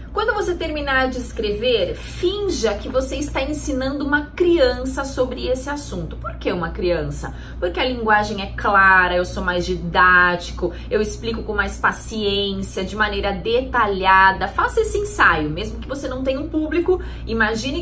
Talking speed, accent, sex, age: 160 wpm, Brazilian, female, 30-49